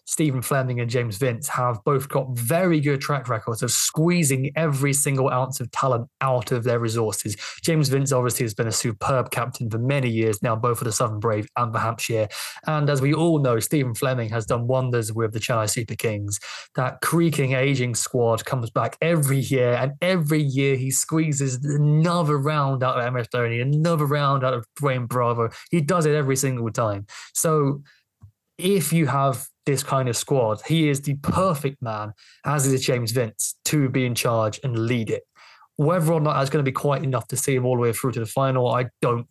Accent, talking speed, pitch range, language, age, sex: British, 205 wpm, 115-140 Hz, English, 20-39, male